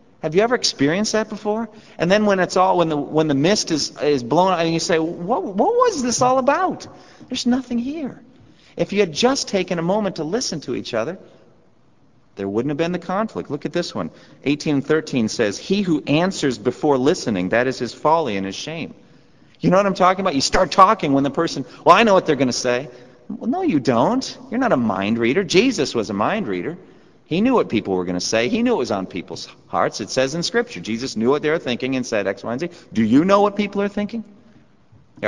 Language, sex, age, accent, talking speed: English, male, 40-59, American, 240 wpm